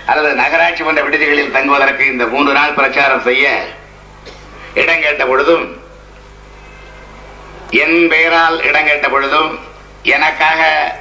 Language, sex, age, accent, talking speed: Tamil, male, 50-69, native, 105 wpm